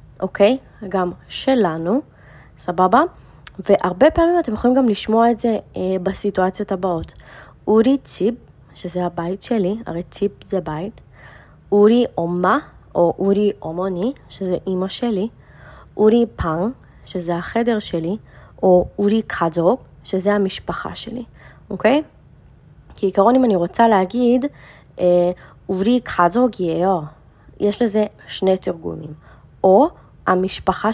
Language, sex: Hebrew, female